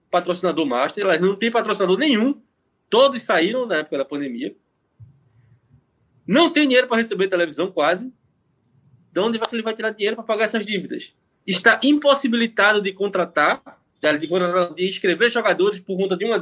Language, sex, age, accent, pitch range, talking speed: Portuguese, male, 20-39, Brazilian, 185-270 Hz, 155 wpm